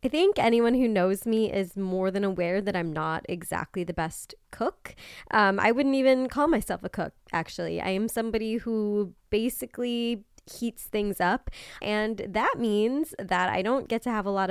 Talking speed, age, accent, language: 185 wpm, 20-39, American, English